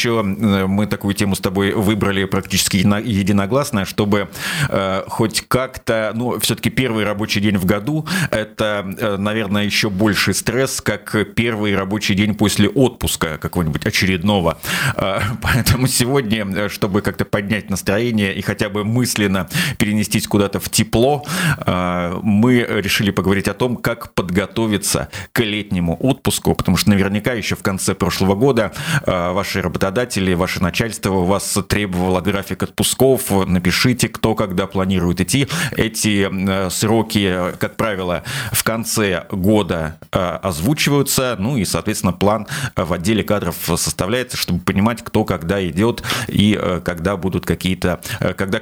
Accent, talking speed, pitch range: native, 125 wpm, 95-115 Hz